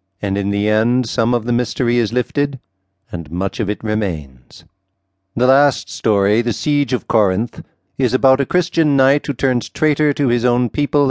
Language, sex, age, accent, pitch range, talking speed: English, male, 60-79, American, 100-130 Hz, 185 wpm